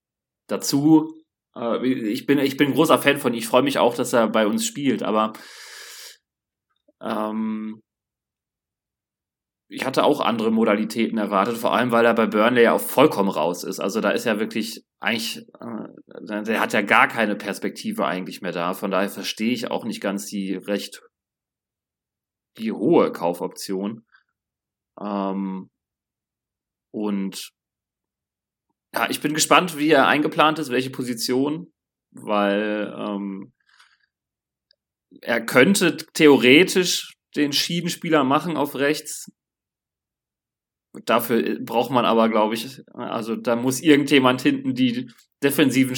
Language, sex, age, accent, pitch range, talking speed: German, male, 30-49, German, 105-150 Hz, 130 wpm